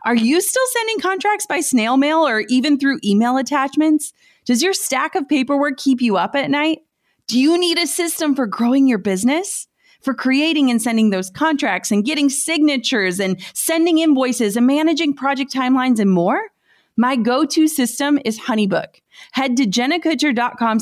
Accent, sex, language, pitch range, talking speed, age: American, female, English, 220-300 Hz, 165 wpm, 30-49